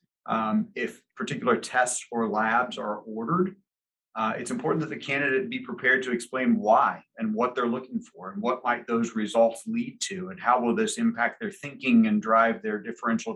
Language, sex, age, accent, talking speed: English, male, 40-59, American, 190 wpm